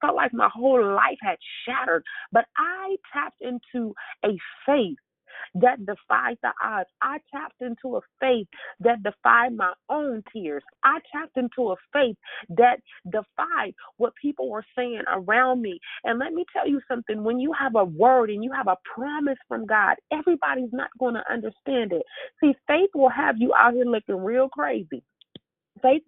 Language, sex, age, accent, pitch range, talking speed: English, female, 30-49, American, 220-285 Hz, 175 wpm